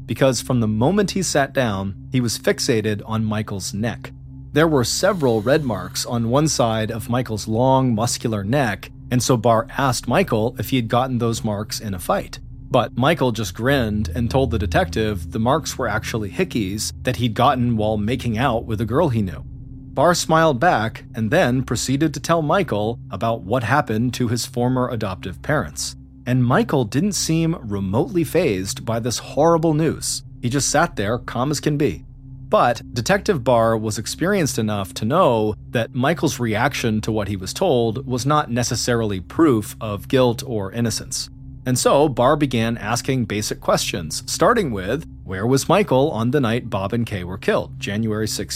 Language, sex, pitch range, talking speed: English, male, 110-135 Hz, 180 wpm